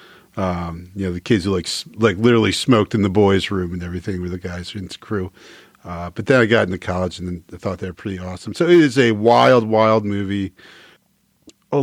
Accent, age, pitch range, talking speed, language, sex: American, 40-59, 95-115 Hz, 230 wpm, English, male